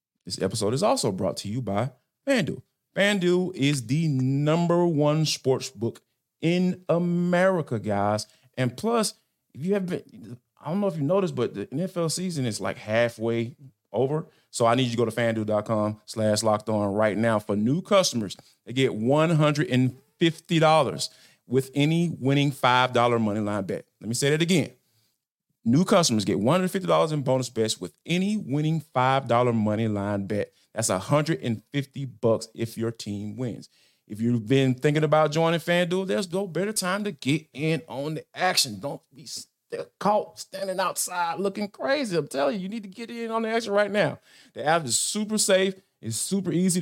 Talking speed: 175 wpm